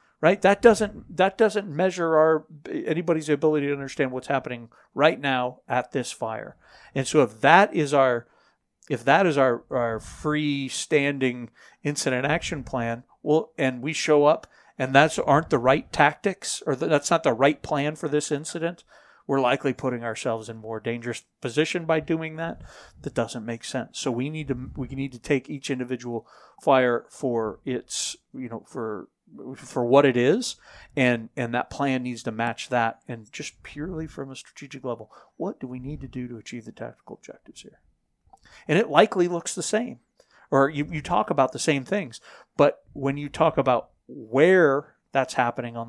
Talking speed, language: 180 wpm, English